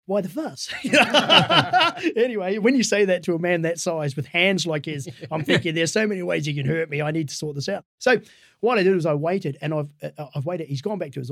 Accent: Australian